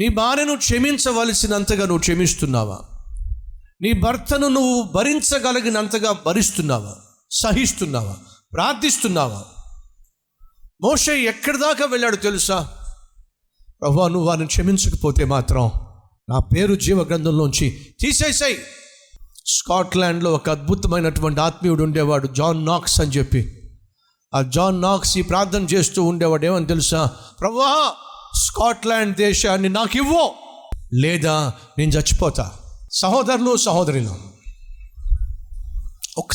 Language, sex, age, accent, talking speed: Telugu, male, 50-69, native, 65 wpm